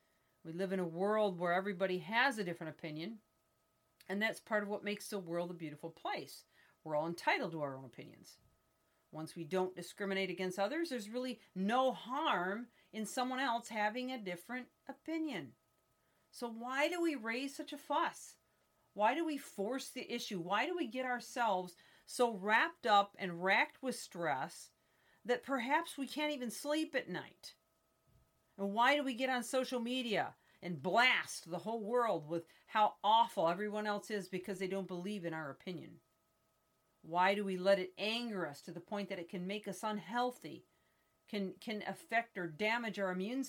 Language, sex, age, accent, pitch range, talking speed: English, female, 40-59, American, 180-250 Hz, 180 wpm